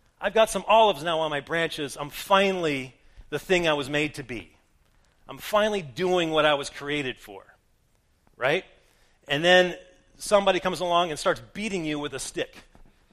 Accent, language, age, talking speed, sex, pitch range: American, English, 40-59, 175 wpm, male, 145-205 Hz